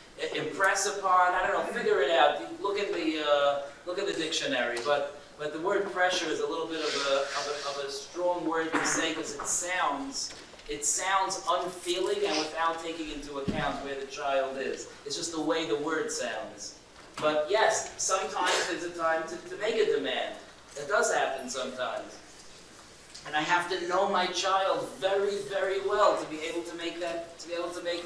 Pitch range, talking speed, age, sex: 150-190 Hz, 200 wpm, 40-59, male